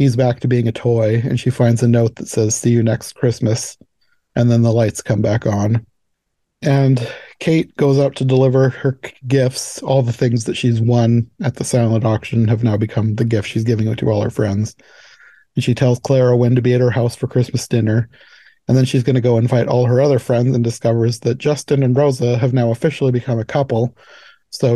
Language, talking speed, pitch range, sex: English, 220 wpm, 115-130 Hz, male